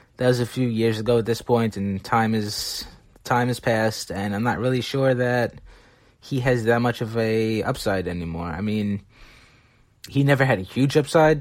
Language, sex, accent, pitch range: English, male, American, 110-125 Hz